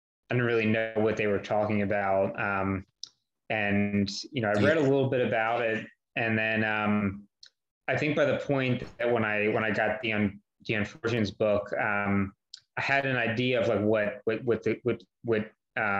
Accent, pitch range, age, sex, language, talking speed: American, 100-115 Hz, 20-39, male, English, 195 wpm